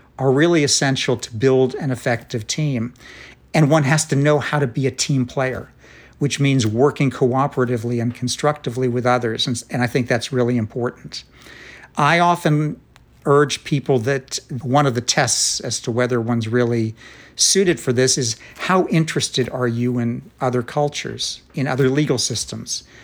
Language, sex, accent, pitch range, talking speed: English, male, American, 120-145 Hz, 165 wpm